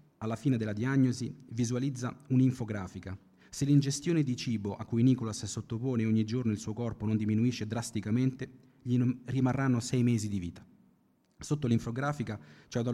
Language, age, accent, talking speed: Italian, 30-49, native, 150 wpm